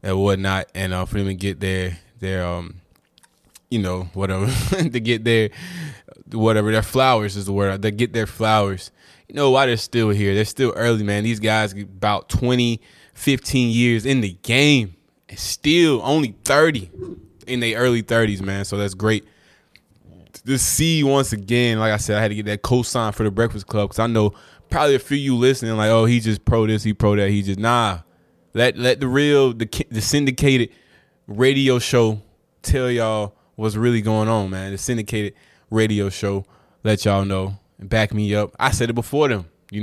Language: English